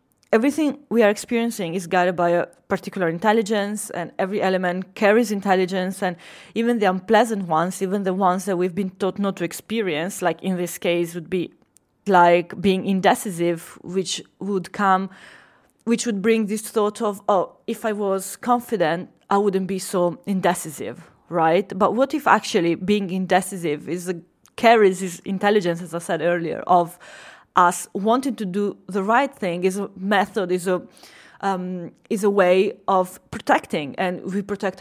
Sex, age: female, 20-39